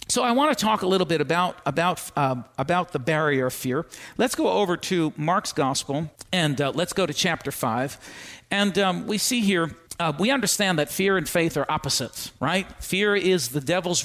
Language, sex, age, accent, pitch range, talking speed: English, male, 50-69, American, 145-180 Hz, 205 wpm